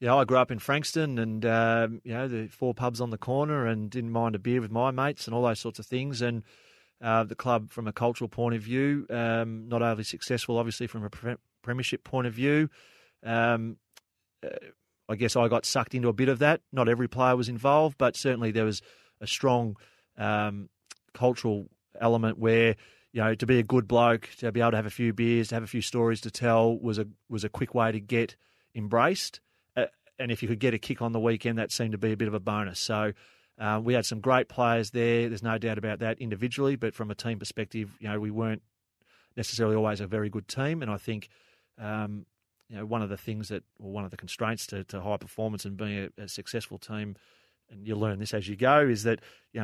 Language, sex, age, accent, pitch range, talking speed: English, male, 30-49, Australian, 110-120 Hz, 235 wpm